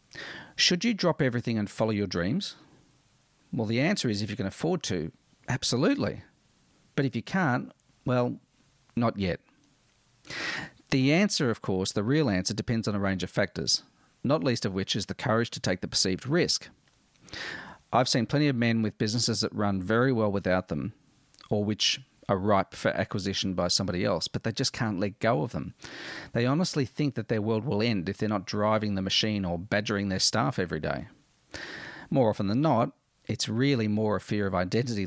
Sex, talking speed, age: male, 190 wpm, 40-59